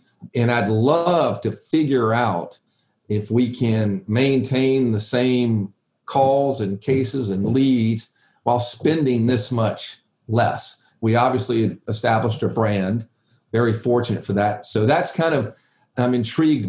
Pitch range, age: 110-130 Hz, 40-59